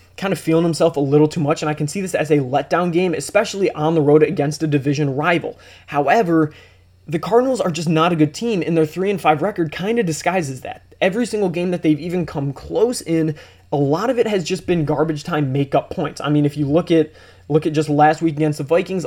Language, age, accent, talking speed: English, 20-39, American, 245 wpm